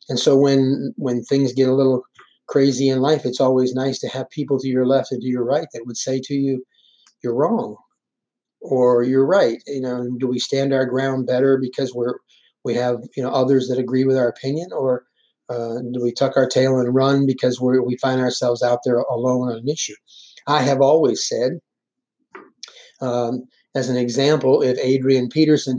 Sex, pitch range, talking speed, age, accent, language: male, 125-140 Hz, 200 wpm, 30-49, American, English